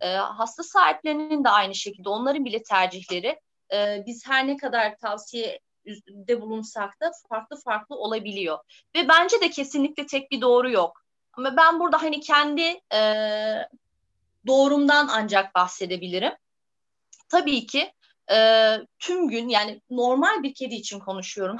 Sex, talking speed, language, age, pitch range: female, 135 wpm, Turkish, 30-49, 220-295 Hz